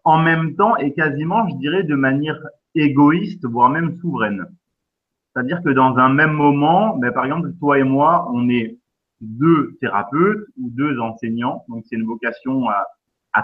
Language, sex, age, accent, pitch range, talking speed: French, male, 30-49, French, 120-165 Hz, 170 wpm